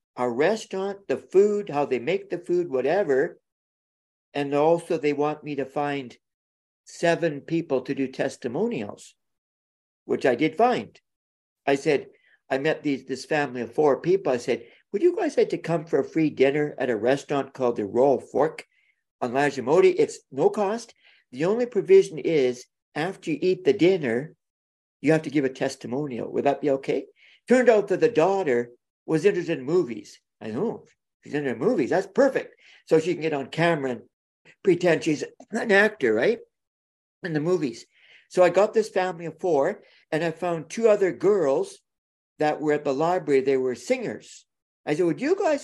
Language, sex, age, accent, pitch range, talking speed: English, male, 60-79, American, 140-220 Hz, 180 wpm